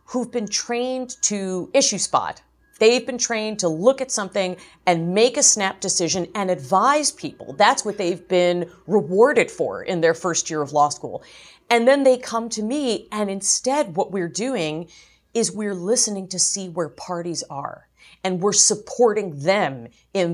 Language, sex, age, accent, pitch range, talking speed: English, female, 40-59, American, 170-230 Hz, 170 wpm